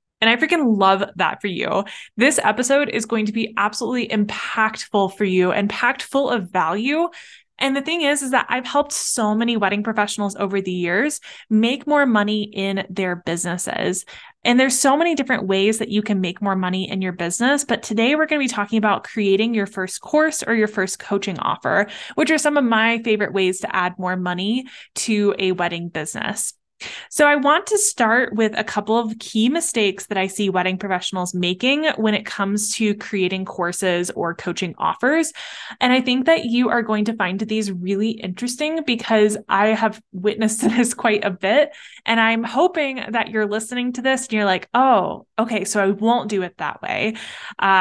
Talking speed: 195 wpm